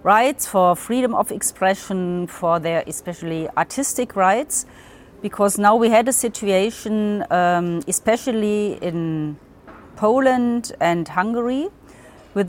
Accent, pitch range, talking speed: German, 175-215 Hz, 110 wpm